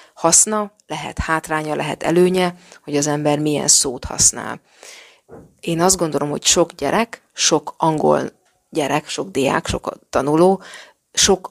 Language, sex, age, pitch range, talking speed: Hungarian, female, 30-49, 150-185 Hz, 130 wpm